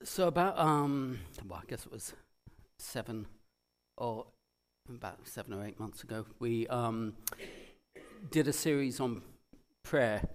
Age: 40-59